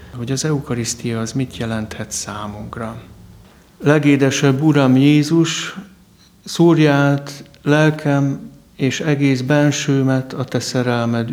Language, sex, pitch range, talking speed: Hungarian, male, 120-140 Hz, 95 wpm